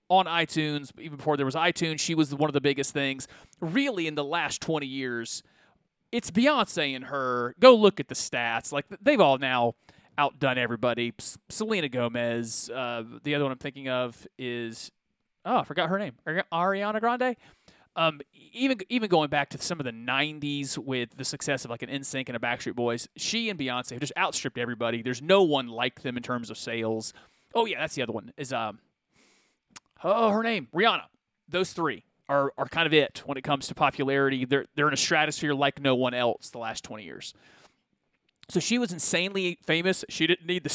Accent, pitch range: American, 130-180 Hz